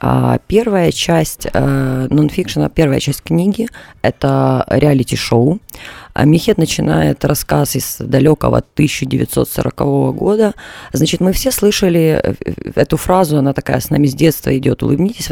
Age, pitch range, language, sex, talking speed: 30-49, 140-170 Hz, Russian, female, 115 wpm